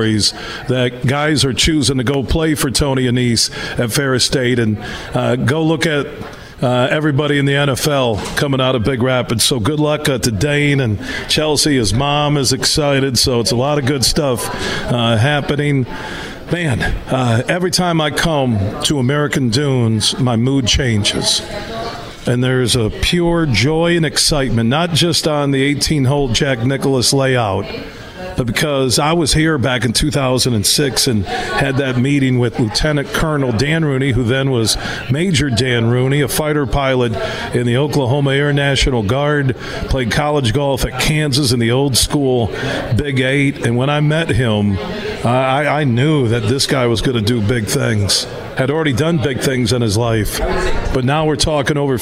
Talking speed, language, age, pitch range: 170 wpm, English, 50-69, 120-145 Hz